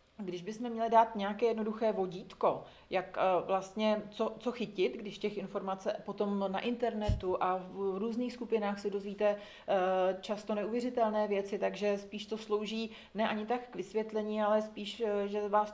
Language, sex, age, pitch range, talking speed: Czech, female, 40-59, 200-230 Hz, 155 wpm